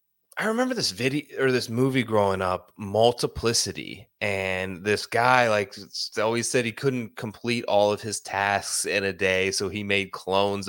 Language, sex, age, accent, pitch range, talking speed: English, male, 20-39, American, 95-120 Hz, 170 wpm